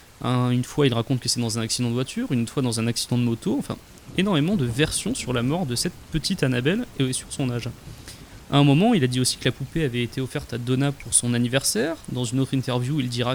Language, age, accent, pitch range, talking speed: French, 20-39, French, 120-155 Hz, 255 wpm